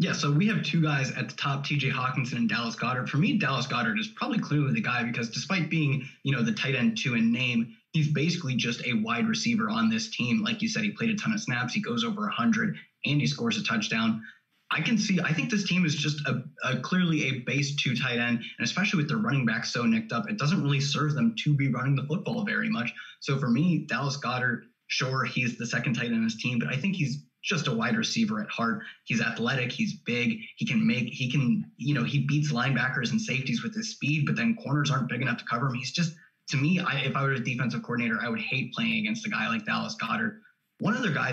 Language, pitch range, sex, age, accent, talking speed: English, 125-215 Hz, male, 20-39, American, 255 wpm